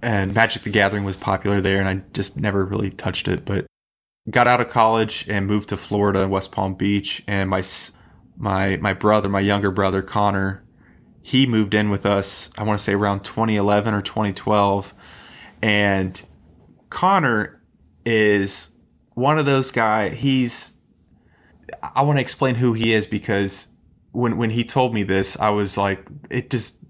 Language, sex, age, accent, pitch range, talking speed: English, male, 20-39, American, 100-120 Hz, 165 wpm